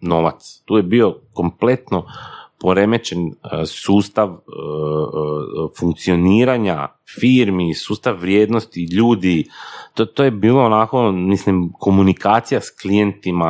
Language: Croatian